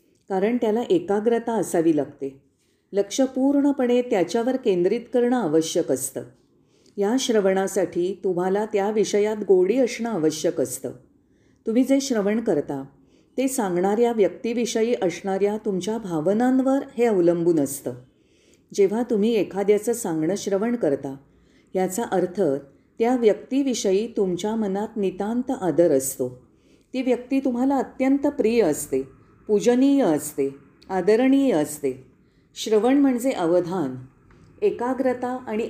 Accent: native